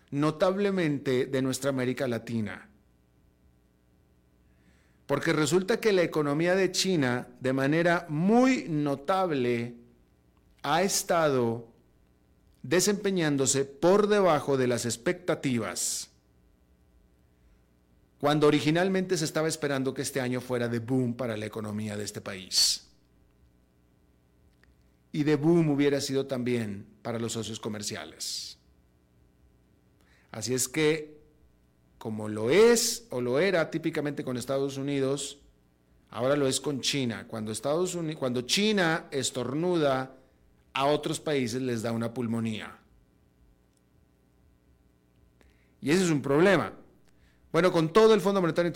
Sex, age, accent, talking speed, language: male, 40-59, Mexican, 115 wpm, Spanish